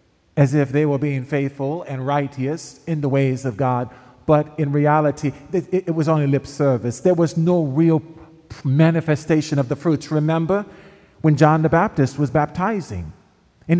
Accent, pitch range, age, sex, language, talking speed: American, 130-180 Hz, 40-59, male, English, 160 wpm